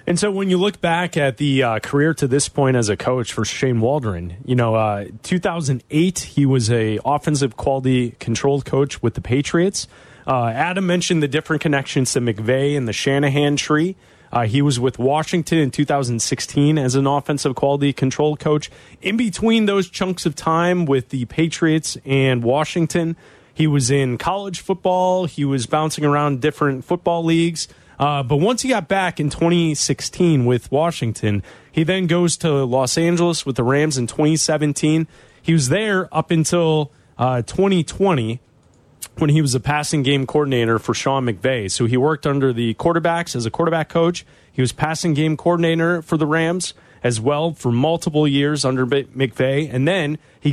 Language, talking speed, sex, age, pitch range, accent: English, 175 wpm, male, 30-49, 130-165 Hz, American